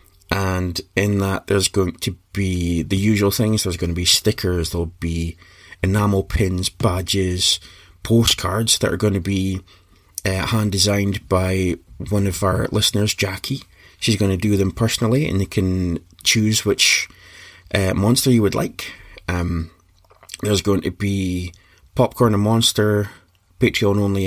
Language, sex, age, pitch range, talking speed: English, male, 20-39, 90-105 Hz, 145 wpm